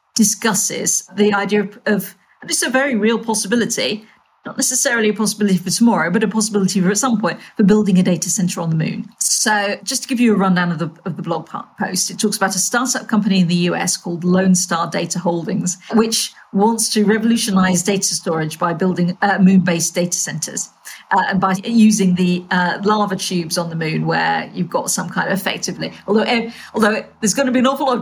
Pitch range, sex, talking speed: 180-215 Hz, female, 215 wpm